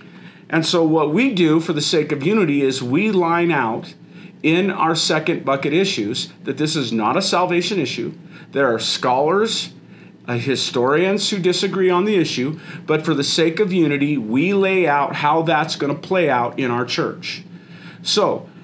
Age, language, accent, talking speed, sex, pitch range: 40-59, English, American, 175 wpm, male, 145-180 Hz